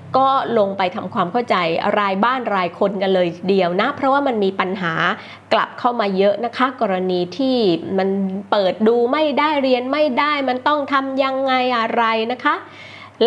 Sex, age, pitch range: female, 20-39, 195-260 Hz